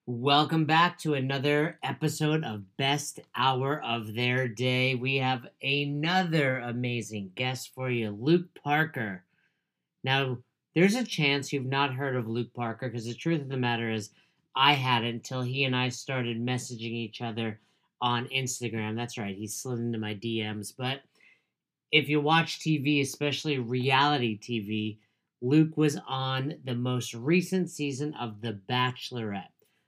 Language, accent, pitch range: English, American, 120-150 Hz